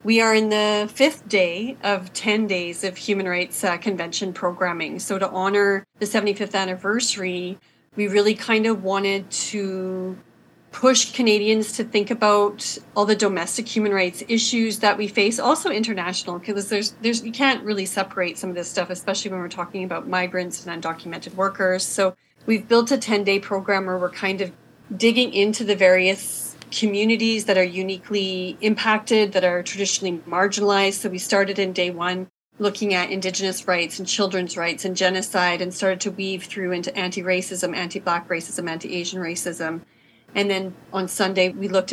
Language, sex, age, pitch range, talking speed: English, female, 30-49, 185-210 Hz, 170 wpm